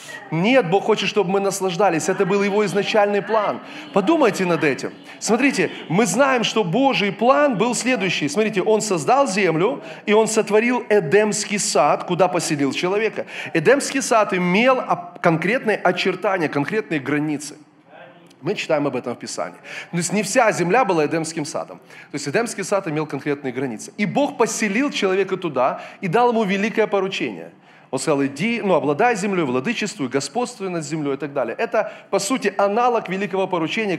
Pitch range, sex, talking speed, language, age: 170-230 Hz, male, 160 wpm, Russian, 30-49